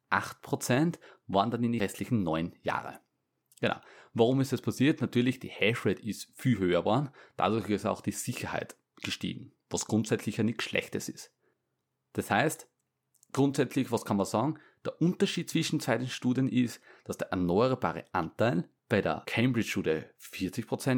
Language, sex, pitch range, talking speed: German, male, 100-135 Hz, 150 wpm